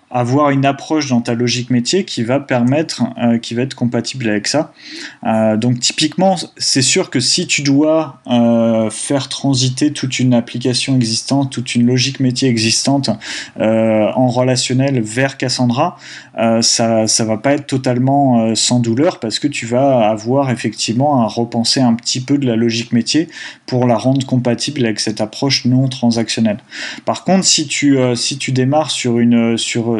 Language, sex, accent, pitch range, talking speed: French, male, French, 115-135 Hz, 175 wpm